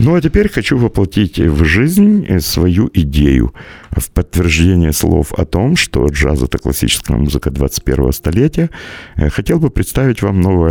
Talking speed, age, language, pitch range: 150 wpm, 50-69, Russian, 75-105 Hz